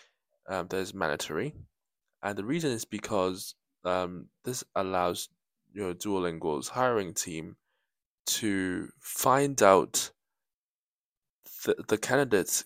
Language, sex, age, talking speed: English, male, 20-39, 95 wpm